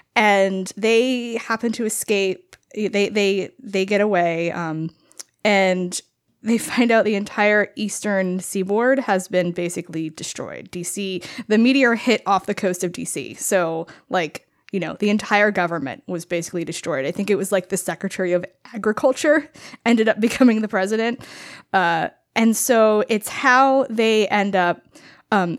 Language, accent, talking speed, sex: English, American, 150 wpm, female